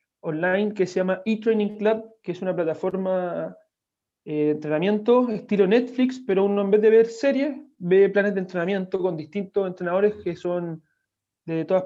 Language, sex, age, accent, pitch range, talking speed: Spanish, male, 30-49, Argentinian, 175-215 Hz, 165 wpm